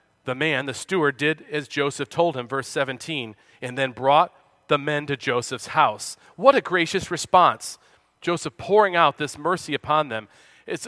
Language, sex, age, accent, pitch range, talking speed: English, male, 40-59, American, 135-205 Hz, 170 wpm